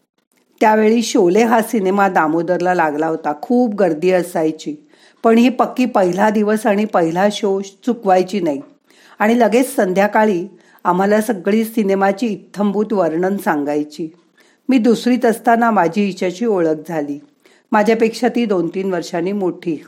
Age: 40-59